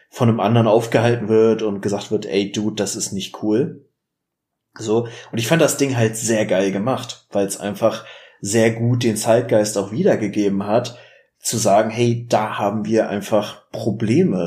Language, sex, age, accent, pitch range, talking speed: German, male, 30-49, German, 110-125 Hz, 175 wpm